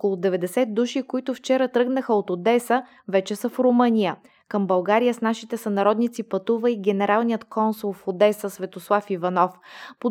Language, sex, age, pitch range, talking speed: Bulgarian, female, 20-39, 195-235 Hz, 155 wpm